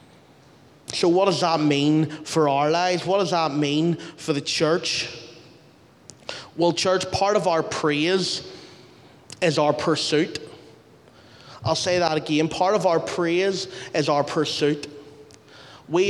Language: English